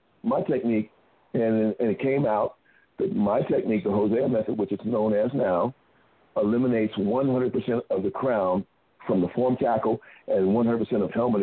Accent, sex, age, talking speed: American, male, 50-69, 165 wpm